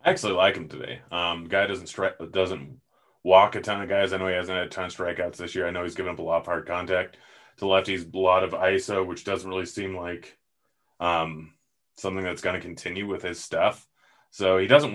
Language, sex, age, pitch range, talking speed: English, male, 30-49, 85-95 Hz, 235 wpm